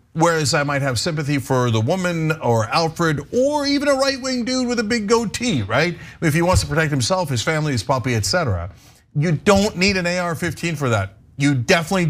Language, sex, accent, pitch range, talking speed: English, male, American, 120-170 Hz, 205 wpm